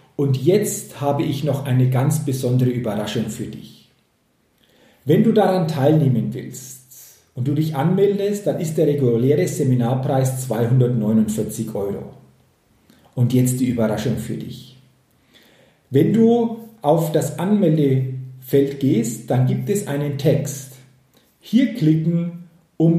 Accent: German